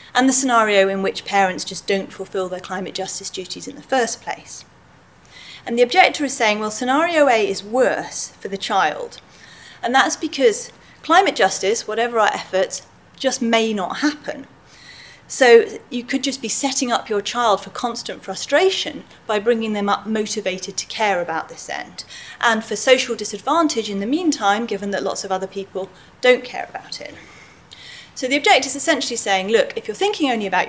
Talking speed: 180 wpm